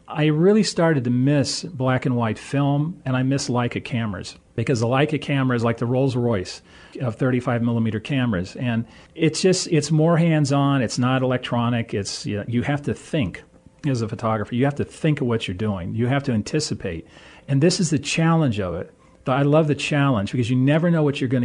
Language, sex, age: English, male, 40-59